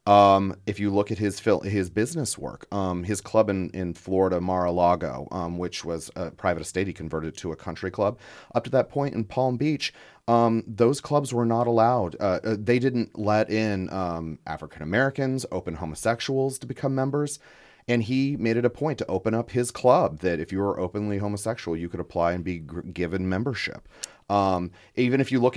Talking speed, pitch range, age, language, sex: 195 wpm, 90-120 Hz, 30-49, English, male